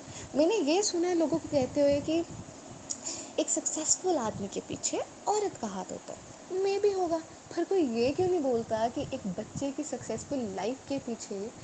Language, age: English, 20-39